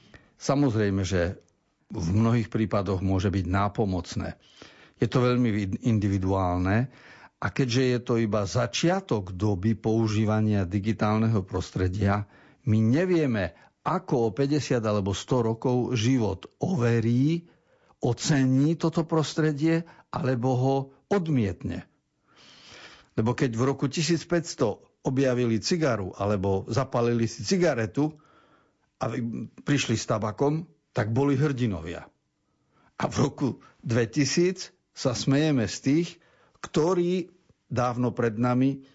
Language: Slovak